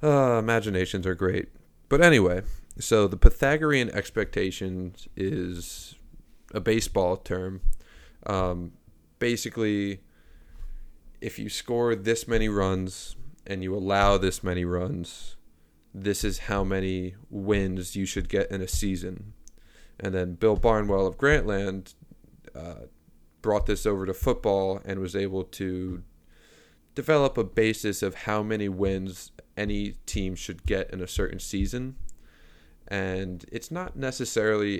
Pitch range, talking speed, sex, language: 90-105 Hz, 130 wpm, male, English